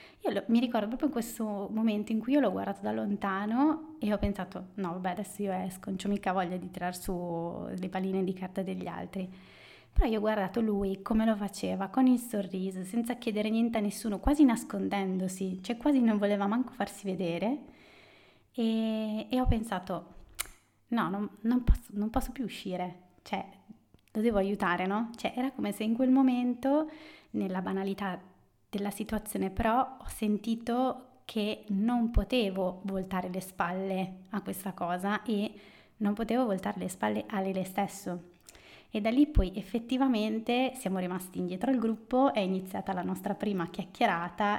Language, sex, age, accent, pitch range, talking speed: Italian, female, 20-39, native, 185-225 Hz, 170 wpm